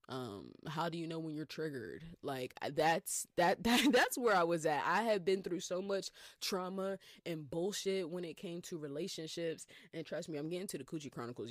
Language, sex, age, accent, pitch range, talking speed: English, female, 20-39, American, 135-175 Hz, 210 wpm